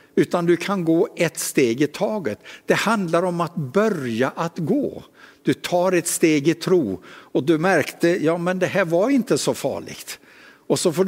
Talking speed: 190 wpm